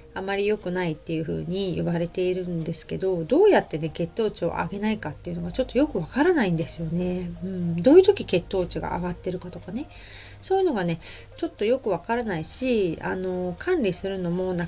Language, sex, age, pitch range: Japanese, female, 30-49, 170-235 Hz